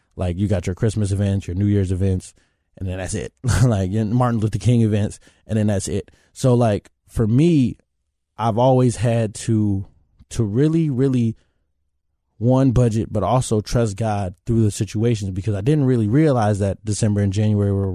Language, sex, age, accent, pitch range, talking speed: English, male, 20-39, American, 100-120 Hz, 175 wpm